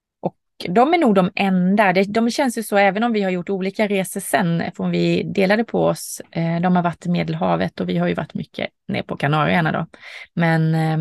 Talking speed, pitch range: 215 wpm, 170-215 Hz